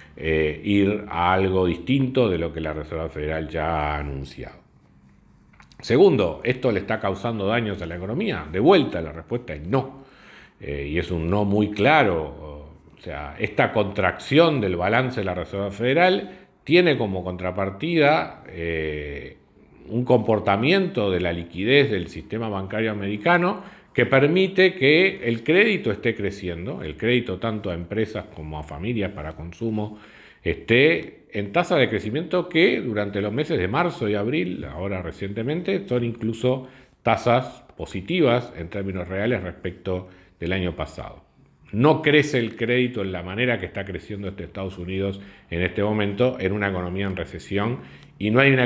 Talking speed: 155 wpm